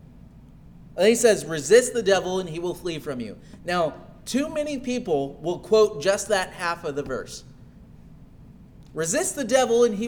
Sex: male